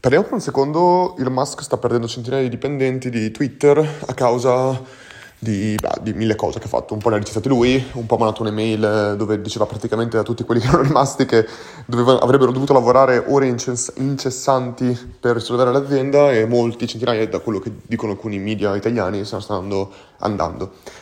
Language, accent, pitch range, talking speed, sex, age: Italian, native, 110-130 Hz, 185 wpm, male, 30-49